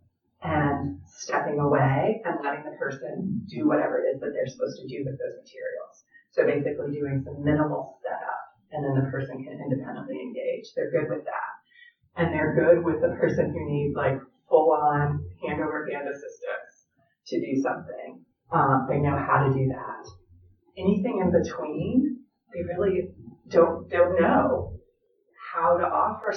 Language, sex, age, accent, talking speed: English, female, 30-49, American, 155 wpm